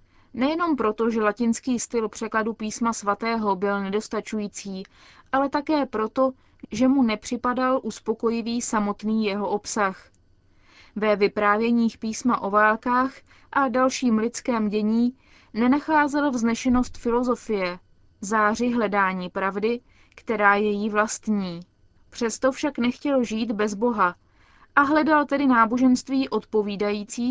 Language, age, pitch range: Czech, 20-39, 205-250 Hz